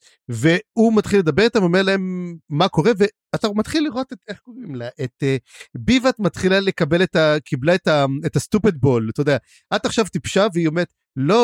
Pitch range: 140-200 Hz